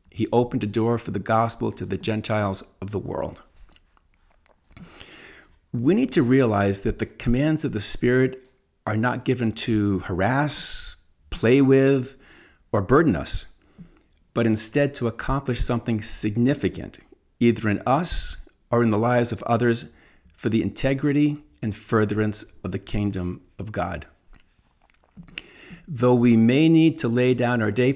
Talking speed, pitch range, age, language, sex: 145 wpm, 100-130 Hz, 50-69, English, male